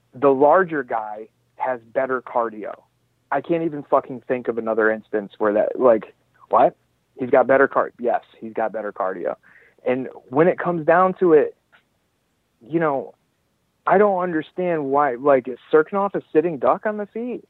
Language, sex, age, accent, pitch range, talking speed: English, male, 40-59, American, 120-170 Hz, 170 wpm